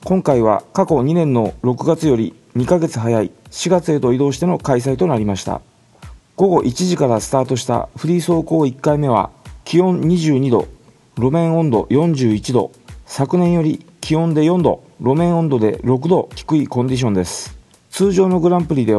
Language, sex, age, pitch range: Japanese, male, 40-59, 120-165 Hz